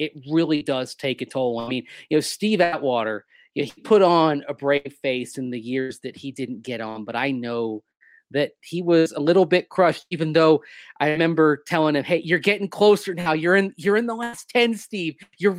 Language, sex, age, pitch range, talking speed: English, male, 30-49, 130-170 Hz, 225 wpm